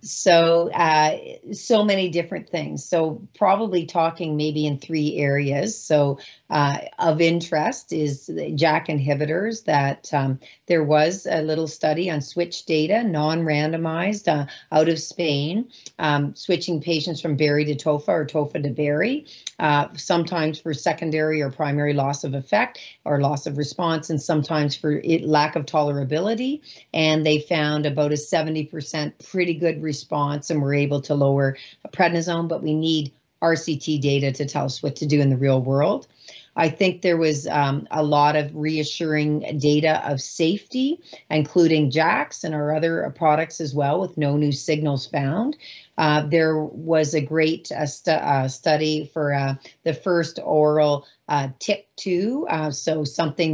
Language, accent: Swedish, American